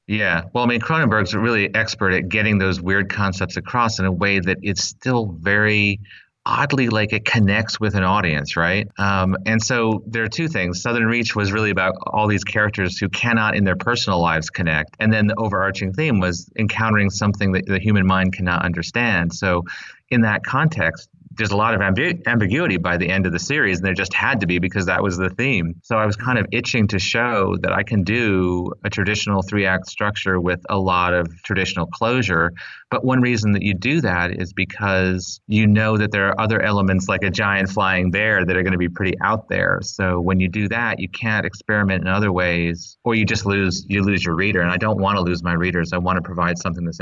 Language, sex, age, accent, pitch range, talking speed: English, male, 30-49, American, 90-110 Hz, 225 wpm